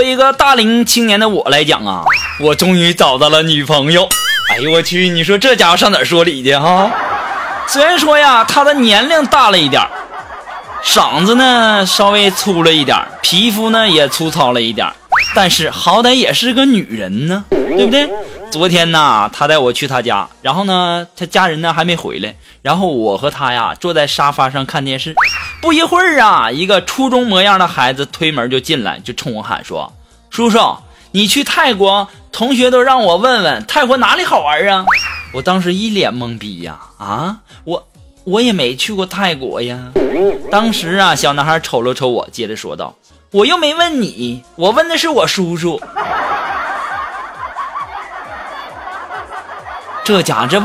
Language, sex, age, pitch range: Chinese, male, 20-39, 160-255 Hz